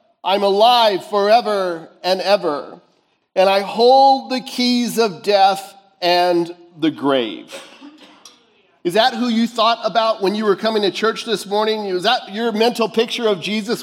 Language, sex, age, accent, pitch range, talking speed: English, male, 50-69, American, 195-250 Hz, 155 wpm